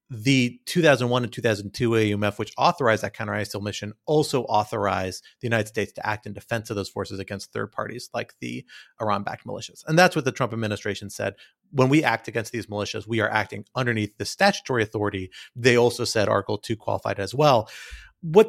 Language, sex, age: English, male, 30-49